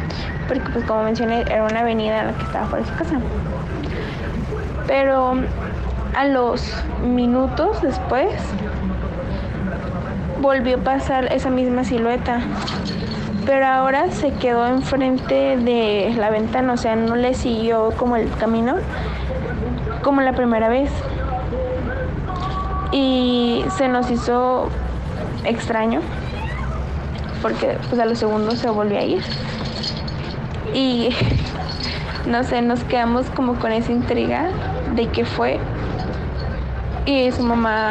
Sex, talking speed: female, 120 wpm